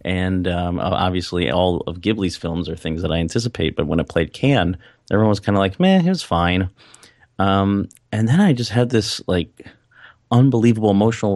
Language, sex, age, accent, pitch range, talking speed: English, male, 30-49, American, 90-115 Hz, 190 wpm